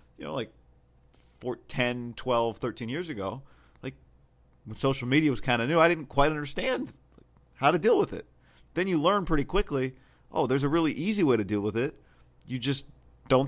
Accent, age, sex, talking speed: American, 40-59, male, 190 wpm